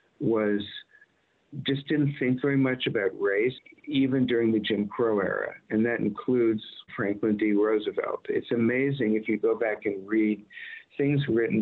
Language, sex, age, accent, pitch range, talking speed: English, male, 50-69, American, 105-145 Hz, 155 wpm